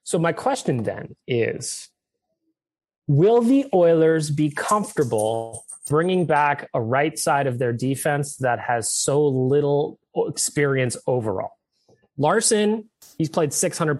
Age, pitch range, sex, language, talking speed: 20-39, 125-170 Hz, male, English, 120 wpm